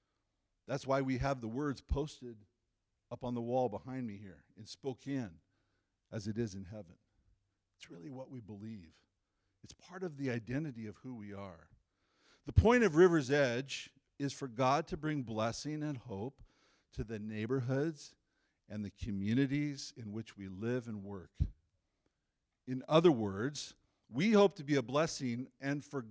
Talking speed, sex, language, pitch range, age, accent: 165 wpm, male, English, 100-130 Hz, 50-69, American